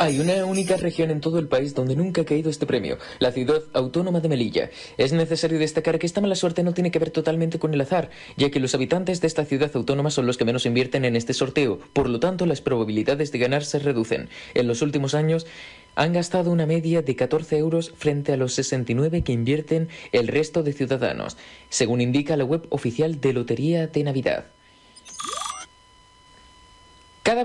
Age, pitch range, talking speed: 30-49, 135-170 Hz, 195 wpm